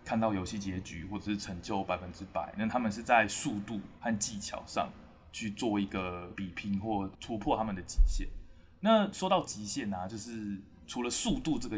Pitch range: 100-120 Hz